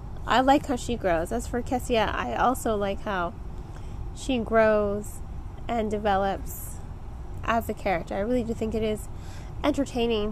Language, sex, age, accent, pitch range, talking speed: English, female, 10-29, American, 175-235 Hz, 150 wpm